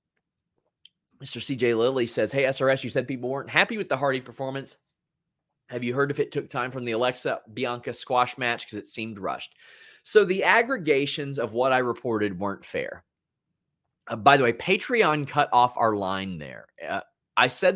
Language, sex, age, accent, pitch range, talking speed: English, male, 30-49, American, 115-155 Hz, 180 wpm